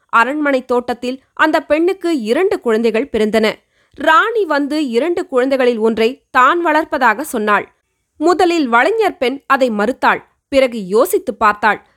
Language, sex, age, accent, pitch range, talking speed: Tamil, female, 20-39, native, 235-310 Hz, 115 wpm